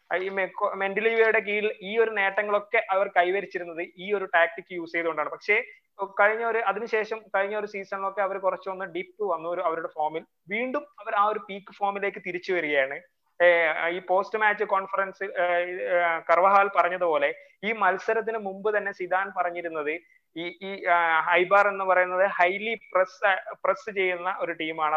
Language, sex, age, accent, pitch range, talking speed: Malayalam, male, 20-39, native, 170-200 Hz, 140 wpm